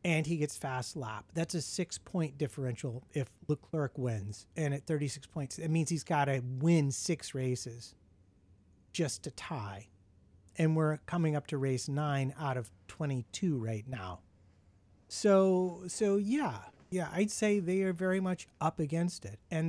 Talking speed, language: 160 wpm, English